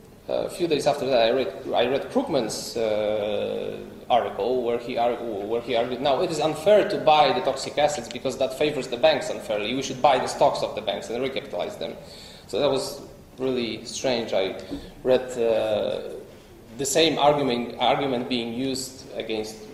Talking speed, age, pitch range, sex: 180 wpm, 20-39, 115-170 Hz, male